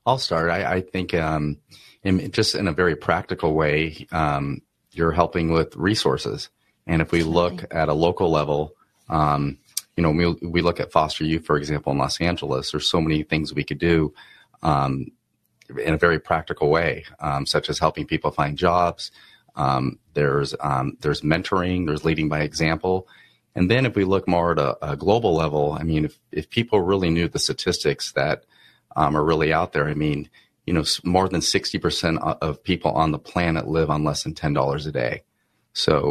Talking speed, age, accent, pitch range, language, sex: 190 wpm, 30-49, American, 75-85 Hz, English, male